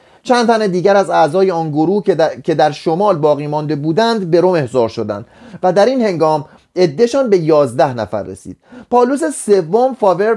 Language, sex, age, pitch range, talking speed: Persian, male, 30-49, 145-225 Hz, 170 wpm